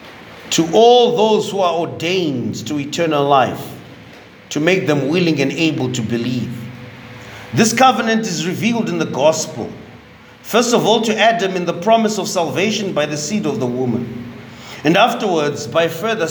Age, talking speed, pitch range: 40-59, 160 wpm, 150-220 Hz